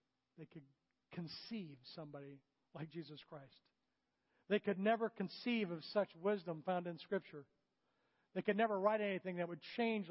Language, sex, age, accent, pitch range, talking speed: English, male, 40-59, American, 160-210 Hz, 150 wpm